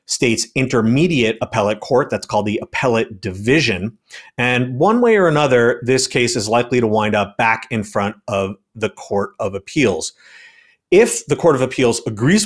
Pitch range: 110-140 Hz